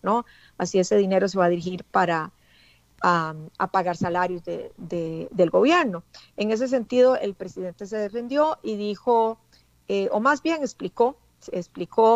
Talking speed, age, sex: 160 wpm, 40-59, female